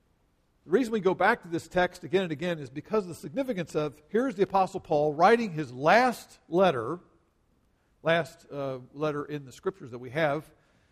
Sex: male